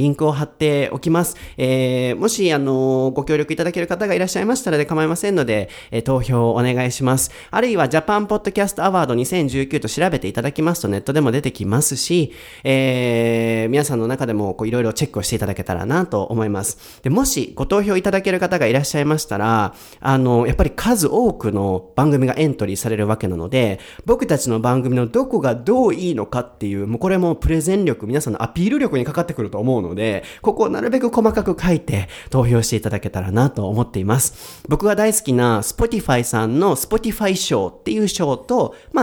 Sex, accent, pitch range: male, native, 115-160 Hz